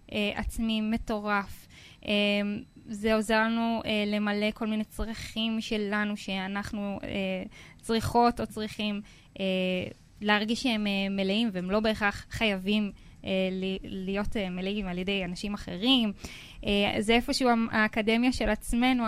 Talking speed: 130 wpm